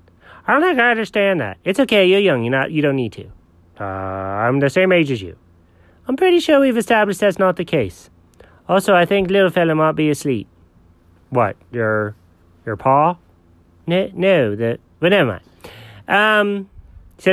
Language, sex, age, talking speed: English, male, 30-49, 180 wpm